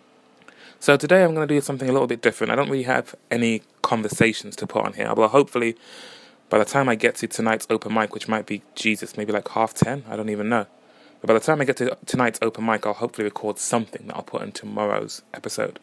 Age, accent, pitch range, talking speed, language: 20-39, British, 110-135 Hz, 245 wpm, English